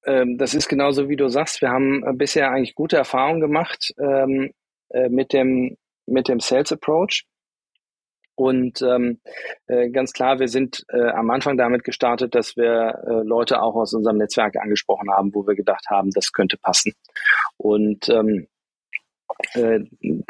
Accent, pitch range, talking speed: German, 115-130 Hz, 150 wpm